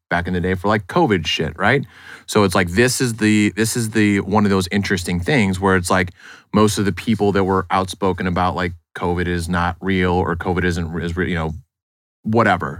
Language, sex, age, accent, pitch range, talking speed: English, male, 30-49, American, 90-105 Hz, 210 wpm